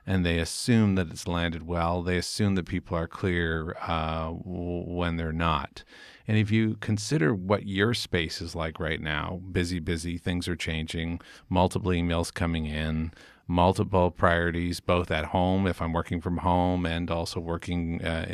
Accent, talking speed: American, 165 wpm